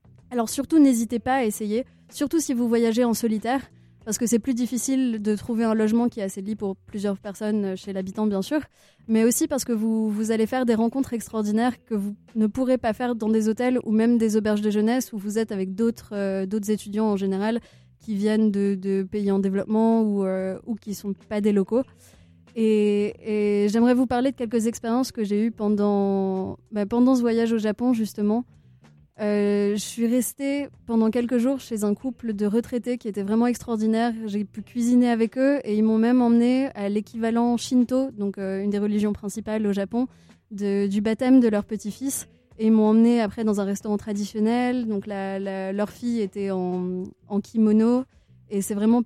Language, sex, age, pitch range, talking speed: French, female, 20-39, 205-235 Hz, 205 wpm